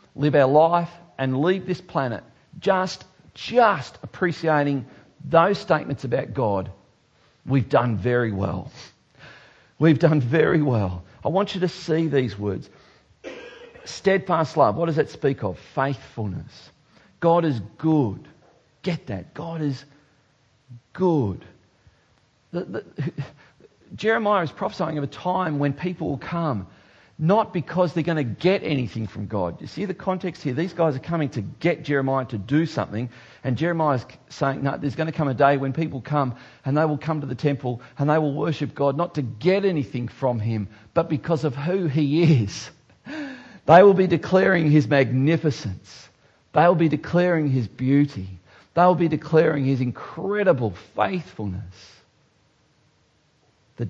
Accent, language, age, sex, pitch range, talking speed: Australian, English, 50-69, male, 125-170 Hz, 155 wpm